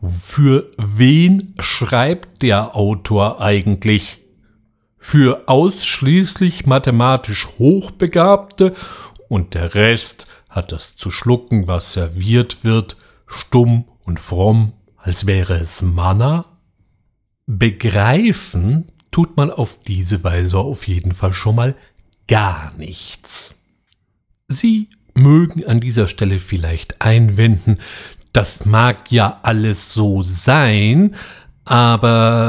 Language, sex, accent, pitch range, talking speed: German, male, German, 95-135 Hz, 100 wpm